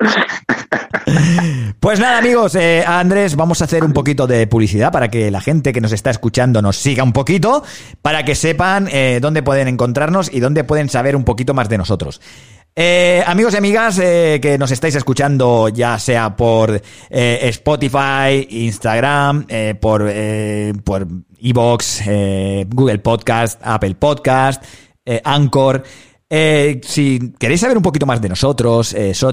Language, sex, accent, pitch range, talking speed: Spanish, male, Spanish, 110-155 Hz, 160 wpm